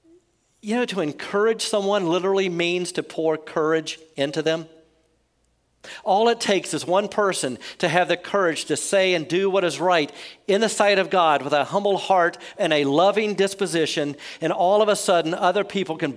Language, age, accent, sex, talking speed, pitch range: English, 50-69, American, male, 185 wpm, 155-200 Hz